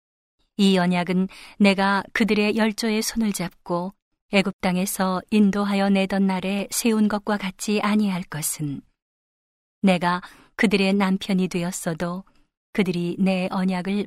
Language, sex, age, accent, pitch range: Korean, female, 40-59, native, 175-210 Hz